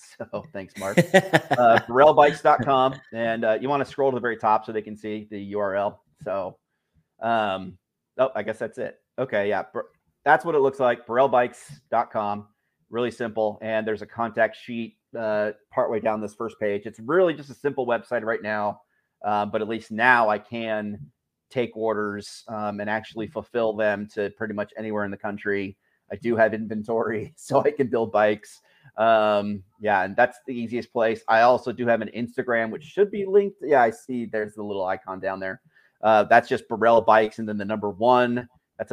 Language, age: English, 30-49